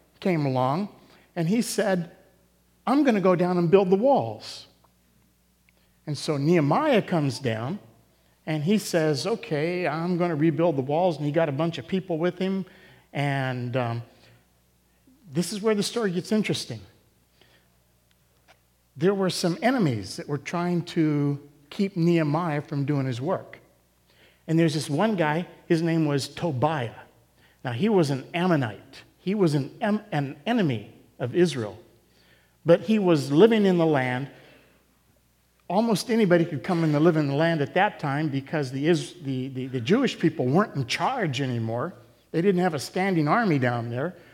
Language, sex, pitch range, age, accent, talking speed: English, male, 125-180 Hz, 50-69, American, 160 wpm